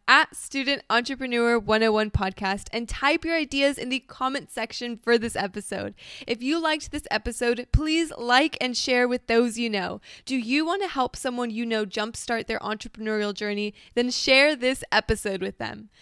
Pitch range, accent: 225-280 Hz, American